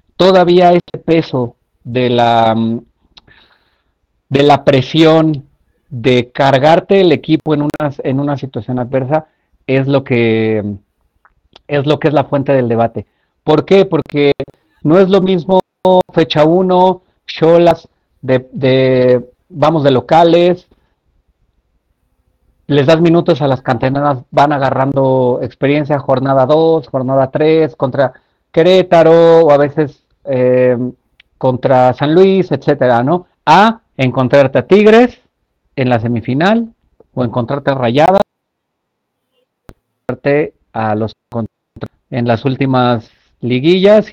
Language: Spanish